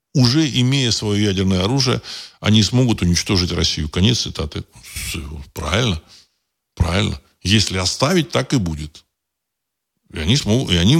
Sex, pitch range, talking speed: male, 85-105 Hz, 125 wpm